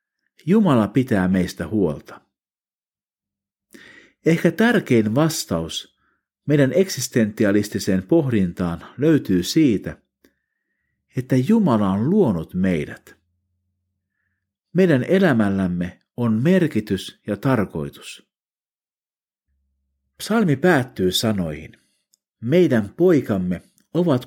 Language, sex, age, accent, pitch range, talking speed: Finnish, male, 50-69, native, 95-150 Hz, 70 wpm